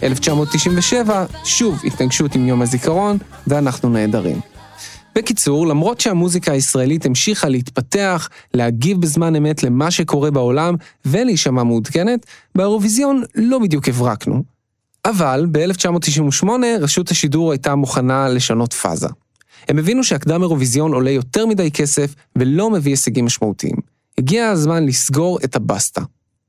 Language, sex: Hebrew, male